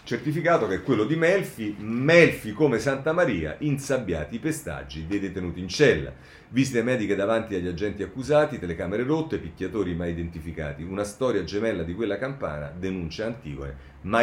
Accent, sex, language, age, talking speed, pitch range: native, male, Italian, 40-59, 155 wpm, 85-120 Hz